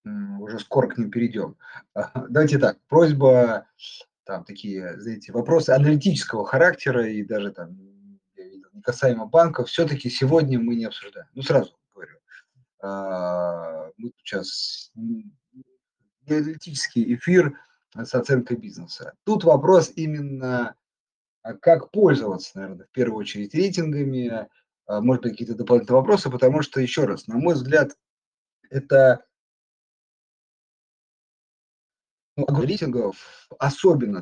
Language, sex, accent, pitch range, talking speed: Russian, male, native, 115-160 Hz, 105 wpm